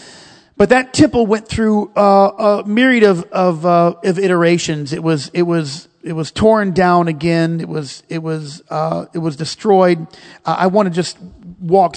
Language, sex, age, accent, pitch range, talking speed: English, male, 40-59, American, 160-200 Hz, 180 wpm